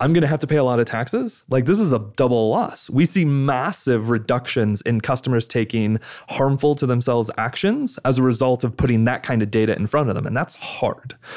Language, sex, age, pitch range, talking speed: English, male, 20-39, 115-150 Hz, 220 wpm